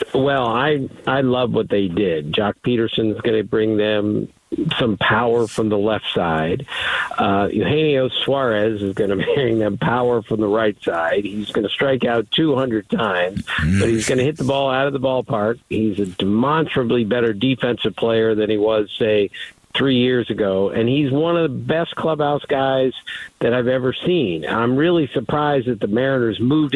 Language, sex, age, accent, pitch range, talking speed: English, male, 50-69, American, 115-150 Hz, 175 wpm